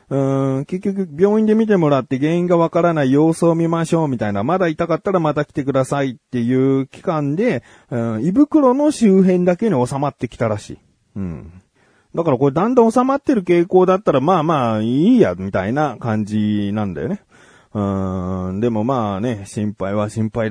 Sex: male